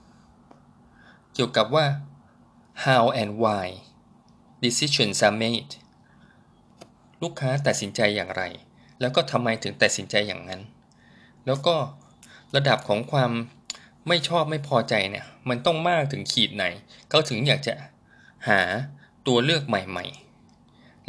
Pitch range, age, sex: 110-140 Hz, 20-39, male